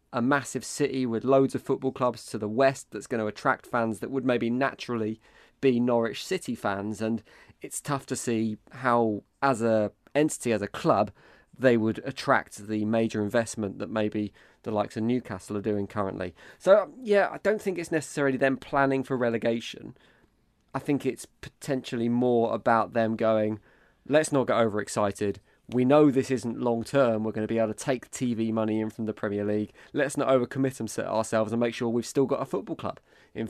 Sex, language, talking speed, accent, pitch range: male, English, 195 wpm, British, 110-135 Hz